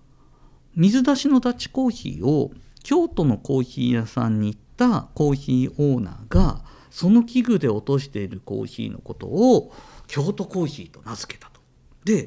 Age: 50-69